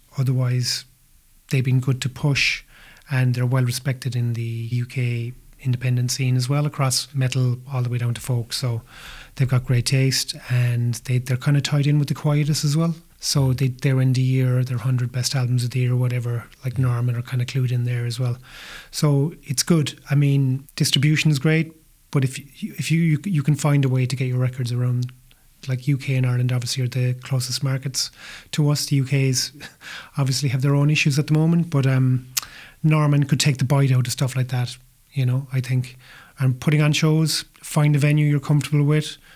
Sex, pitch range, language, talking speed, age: male, 125-145 Hz, English, 210 wpm, 30-49